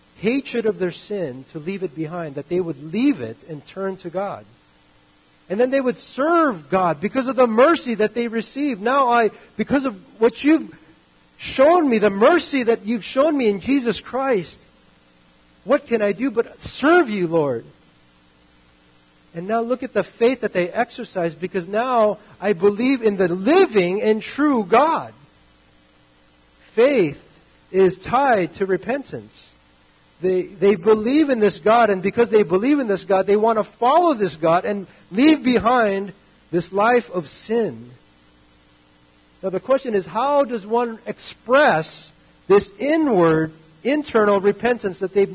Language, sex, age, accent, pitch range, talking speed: English, male, 40-59, American, 155-235 Hz, 155 wpm